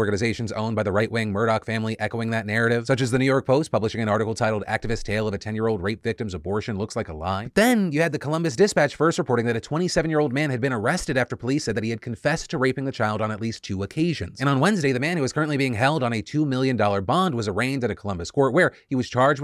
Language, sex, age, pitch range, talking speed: English, male, 30-49, 110-145 Hz, 270 wpm